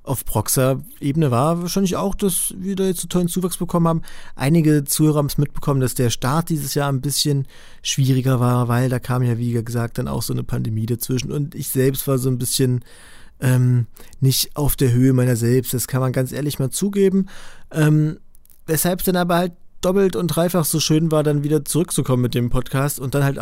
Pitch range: 130-165 Hz